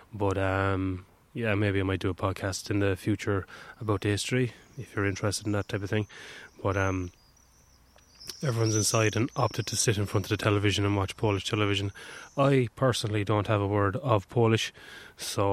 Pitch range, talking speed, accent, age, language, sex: 95-115 Hz, 190 wpm, Irish, 20-39, English, male